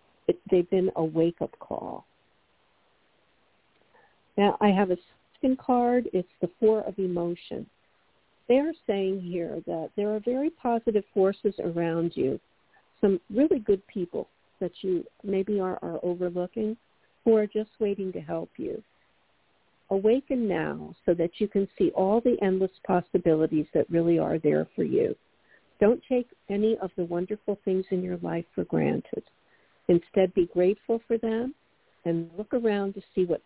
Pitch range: 170-225 Hz